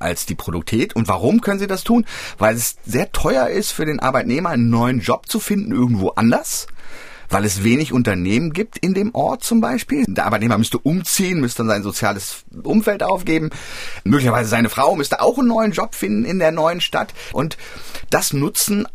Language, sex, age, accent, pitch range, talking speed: German, male, 30-49, German, 110-175 Hz, 190 wpm